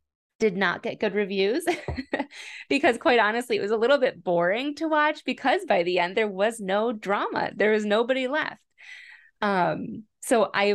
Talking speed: 175 wpm